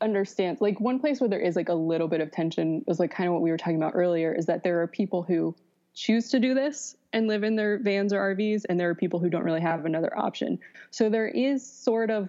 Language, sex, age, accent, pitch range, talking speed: English, female, 20-39, American, 165-205 Hz, 270 wpm